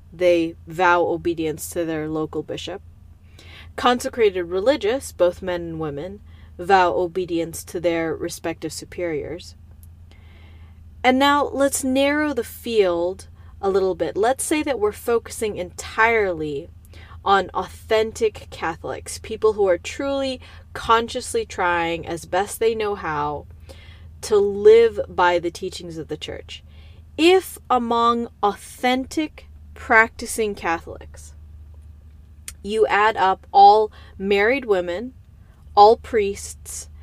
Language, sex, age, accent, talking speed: English, female, 30-49, American, 110 wpm